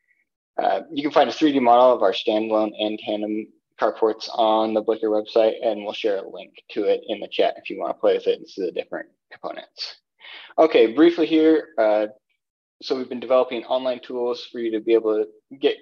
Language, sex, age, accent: English, male, 20-39, American